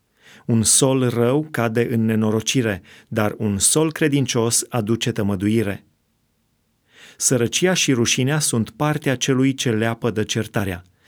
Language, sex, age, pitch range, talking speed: Romanian, male, 30-49, 110-135 Hz, 120 wpm